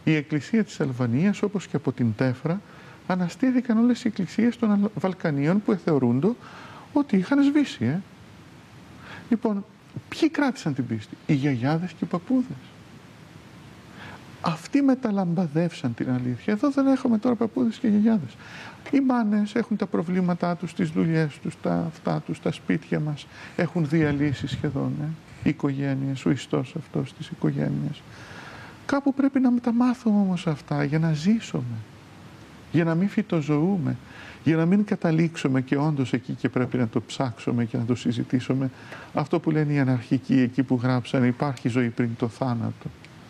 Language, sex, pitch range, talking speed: Greek, male, 135-215 Hz, 150 wpm